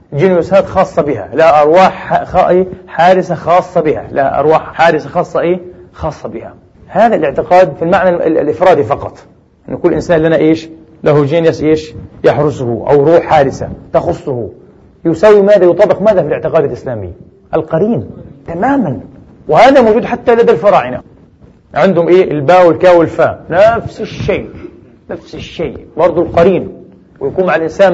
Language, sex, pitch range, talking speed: English, male, 155-185 Hz, 135 wpm